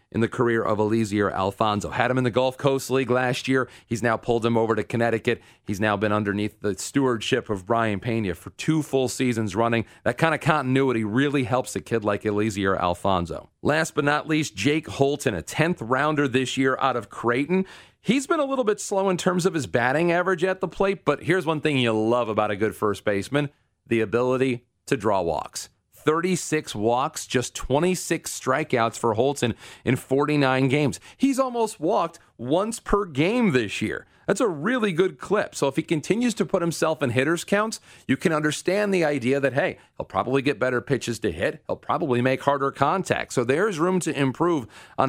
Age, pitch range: 40-59, 115-155 Hz